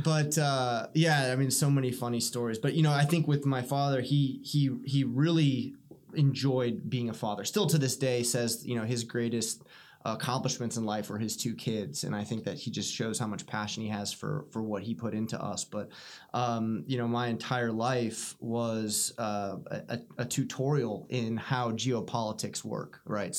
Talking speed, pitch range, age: 200 wpm, 110-130 Hz, 20-39